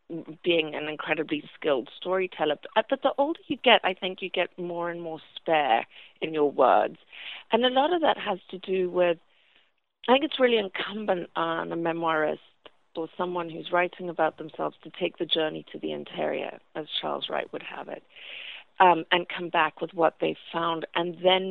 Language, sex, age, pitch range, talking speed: English, female, 40-59, 165-210 Hz, 185 wpm